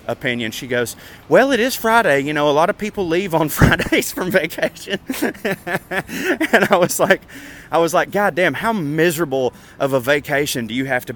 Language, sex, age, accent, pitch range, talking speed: English, male, 30-49, American, 125-180 Hz, 195 wpm